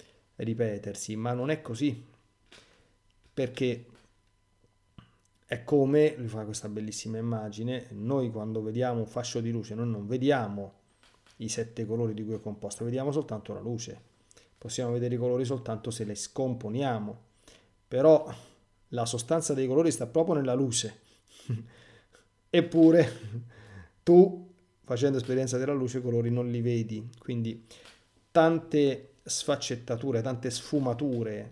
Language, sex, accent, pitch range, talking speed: Italian, male, native, 110-140 Hz, 130 wpm